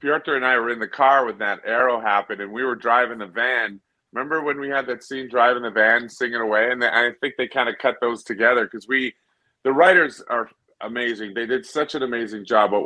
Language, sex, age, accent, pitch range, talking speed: English, male, 40-59, American, 115-140 Hz, 240 wpm